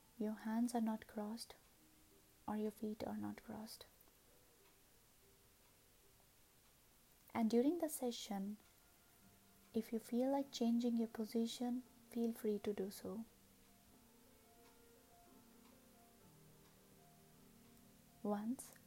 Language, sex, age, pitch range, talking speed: English, female, 20-39, 205-235 Hz, 90 wpm